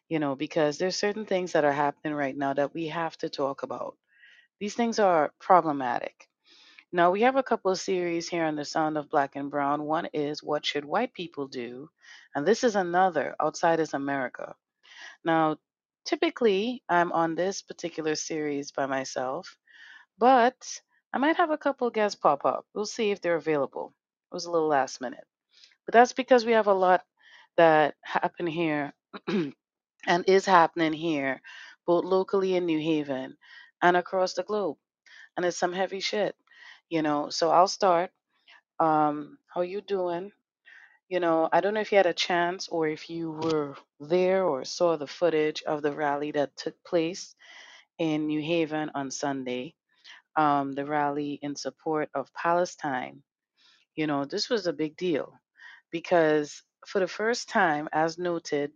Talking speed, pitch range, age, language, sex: 170 wpm, 150-190 Hz, 30-49, English, female